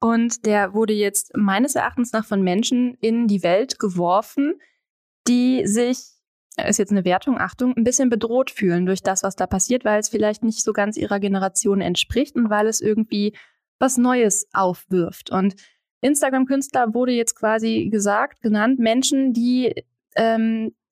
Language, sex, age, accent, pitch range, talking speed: German, female, 20-39, German, 200-250 Hz, 160 wpm